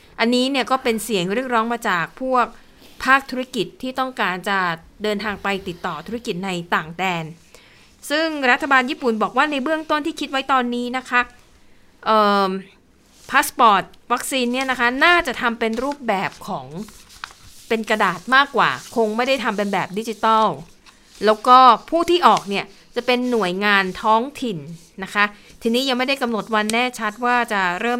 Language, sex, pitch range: Thai, female, 195-245 Hz